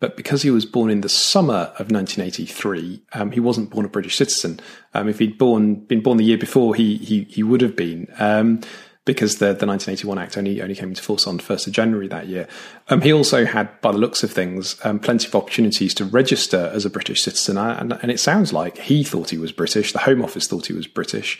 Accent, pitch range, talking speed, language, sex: British, 105-130 Hz, 240 wpm, English, male